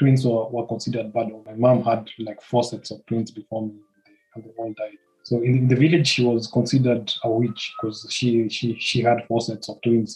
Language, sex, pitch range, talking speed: Swahili, male, 110-125 Hz, 220 wpm